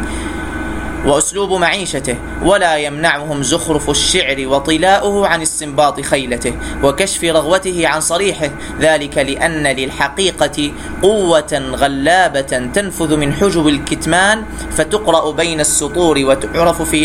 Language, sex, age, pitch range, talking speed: Arabic, male, 30-49, 140-170 Hz, 100 wpm